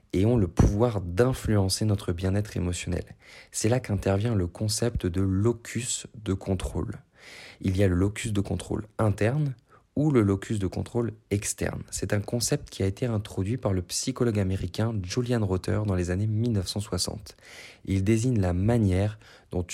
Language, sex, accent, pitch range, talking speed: French, male, French, 95-115 Hz, 160 wpm